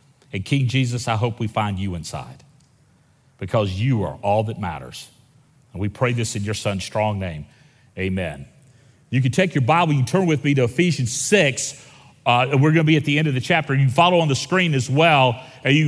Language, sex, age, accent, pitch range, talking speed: English, male, 40-59, American, 130-160 Hz, 225 wpm